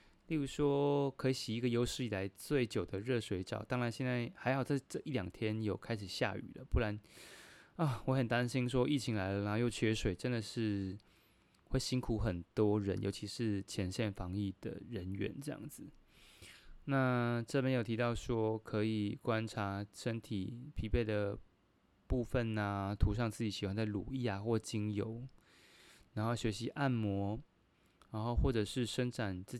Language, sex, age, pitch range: Chinese, male, 20-39, 105-125 Hz